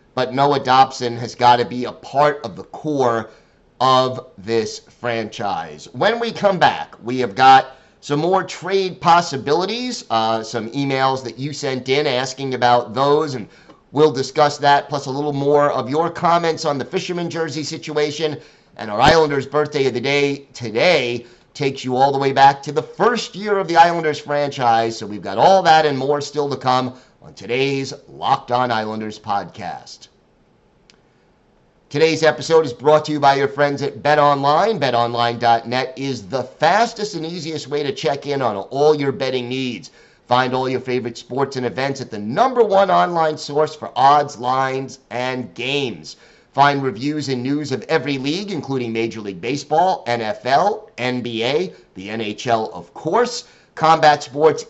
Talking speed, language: 170 wpm, English